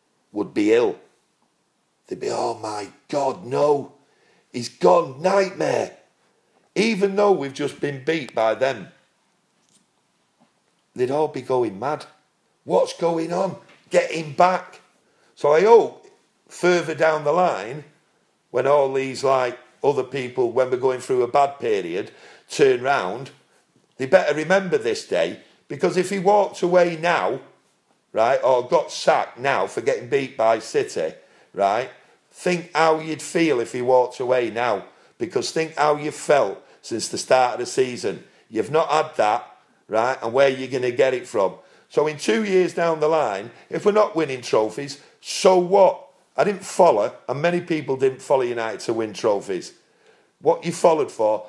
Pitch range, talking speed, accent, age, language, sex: 135-195 Hz, 160 wpm, British, 50-69, English, male